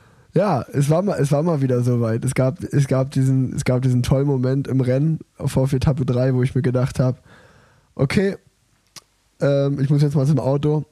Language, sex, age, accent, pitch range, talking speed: German, male, 10-29, German, 130-150 Hz, 210 wpm